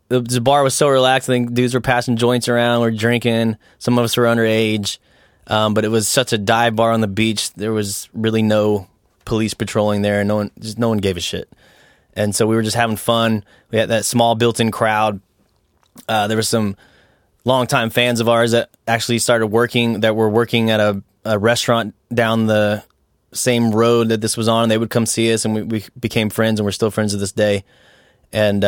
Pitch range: 105-120 Hz